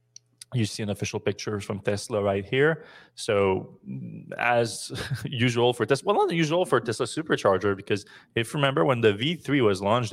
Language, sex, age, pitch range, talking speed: English, male, 20-39, 100-115 Hz, 185 wpm